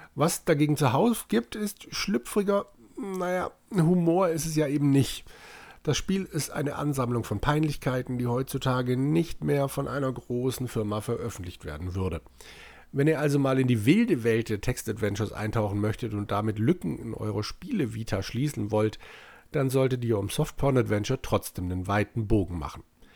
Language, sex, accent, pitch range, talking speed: German, male, German, 105-140 Hz, 165 wpm